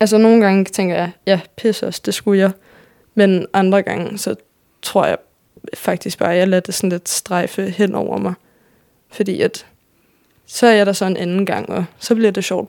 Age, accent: 20-39, native